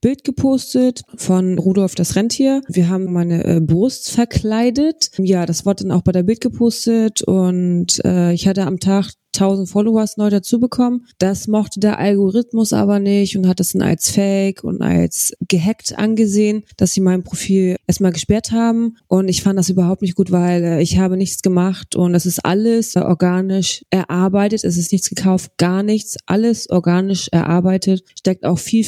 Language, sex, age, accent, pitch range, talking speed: German, female, 20-39, German, 180-210 Hz, 175 wpm